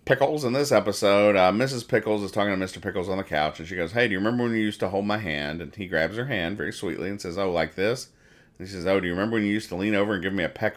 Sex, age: male, 40-59